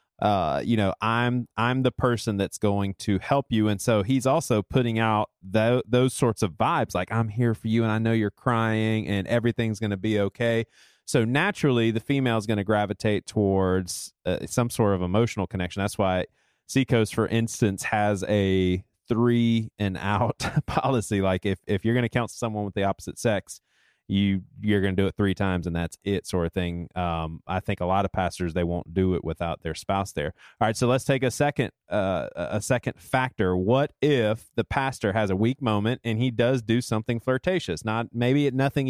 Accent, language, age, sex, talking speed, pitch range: American, English, 30-49, male, 205 wpm, 100-130 Hz